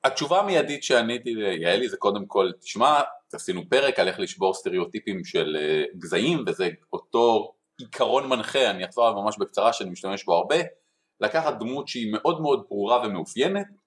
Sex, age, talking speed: male, 30-49, 155 wpm